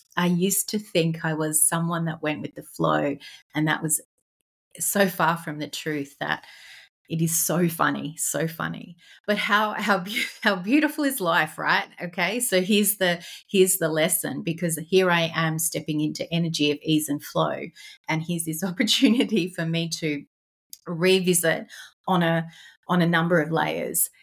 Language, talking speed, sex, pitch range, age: English, 170 wpm, female, 155-185 Hz, 30-49